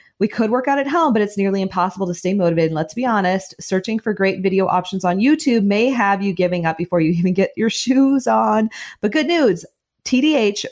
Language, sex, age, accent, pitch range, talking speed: English, female, 30-49, American, 175-225 Hz, 220 wpm